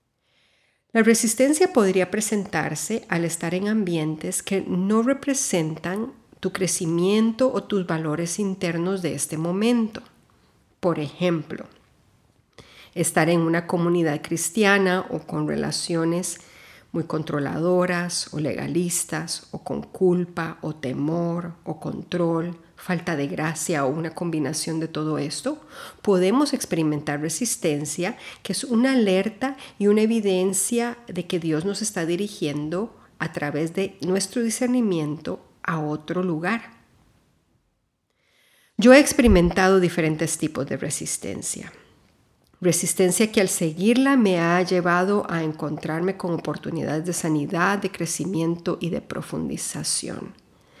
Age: 50-69